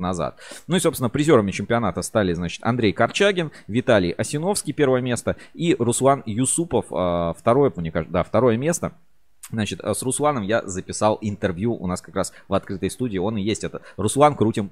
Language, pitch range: Russian, 90-120 Hz